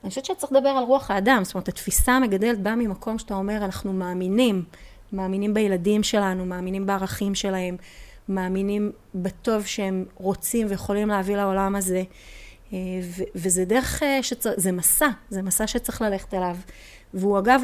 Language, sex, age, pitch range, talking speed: Hebrew, female, 30-49, 185-225 Hz, 150 wpm